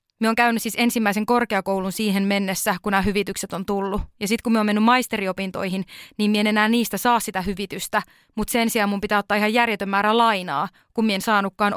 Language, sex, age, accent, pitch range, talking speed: Finnish, female, 20-39, native, 205-245 Hz, 205 wpm